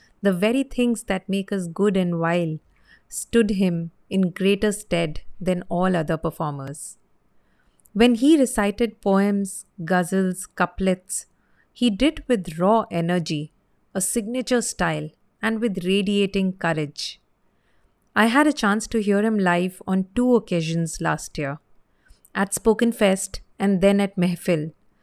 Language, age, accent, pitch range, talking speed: English, 30-49, Indian, 175-230 Hz, 135 wpm